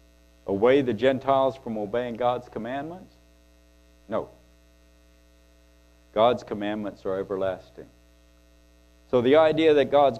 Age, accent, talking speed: 60-79, American, 100 wpm